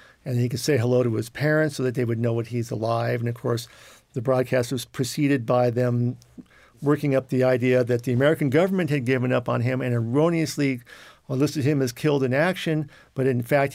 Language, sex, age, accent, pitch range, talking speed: English, male, 50-69, American, 120-140 Hz, 215 wpm